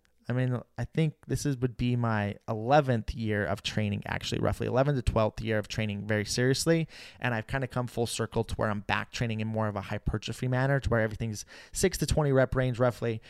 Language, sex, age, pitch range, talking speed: English, male, 20-39, 105-130 Hz, 225 wpm